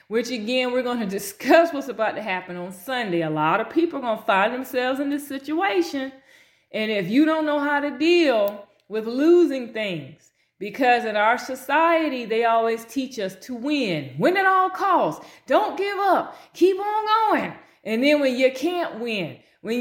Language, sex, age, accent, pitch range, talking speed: English, female, 30-49, American, 195-295 Hz, 190 wpm